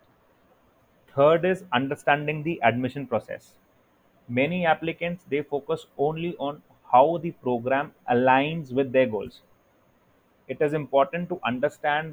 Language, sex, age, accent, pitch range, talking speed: English, male, 30-49, Indian, 120-140 Hz, 120 wpm